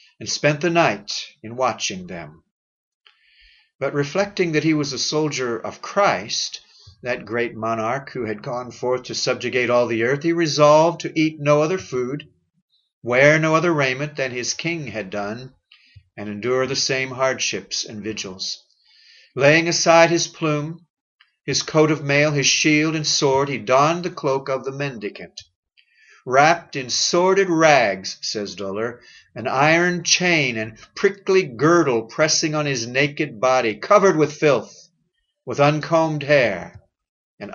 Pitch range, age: 115-160 Hz, 50-69